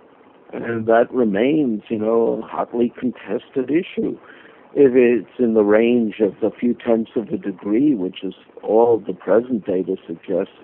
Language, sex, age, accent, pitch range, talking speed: English, male, 60-79, American, 105-140 Hz, 160 wpm